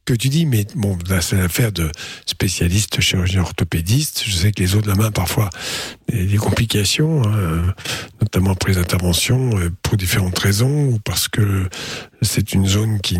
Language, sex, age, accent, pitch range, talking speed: French, male, 50-69, French, 100-125 Hz, 185 wpm